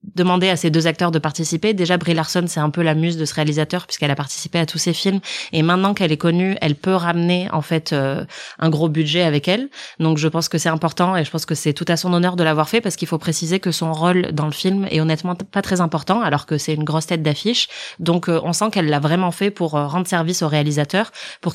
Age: 20-39